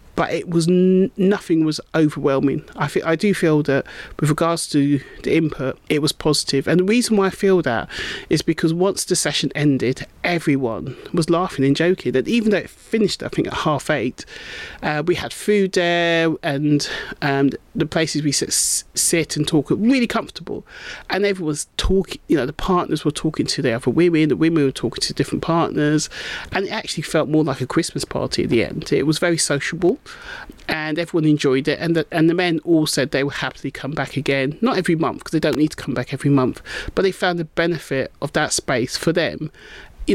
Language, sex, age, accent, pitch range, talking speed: English, male, 30-49, British, 145-180 Hz, 215 wpm